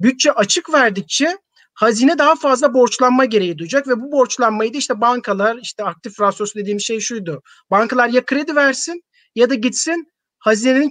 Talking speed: 160 wpm